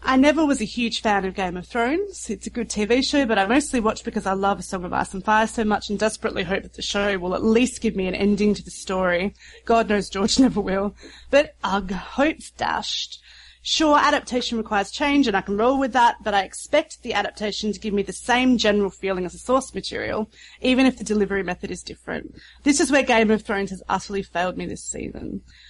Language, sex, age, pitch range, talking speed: English, female, 30-49, 195-255 Hz, 235 wpm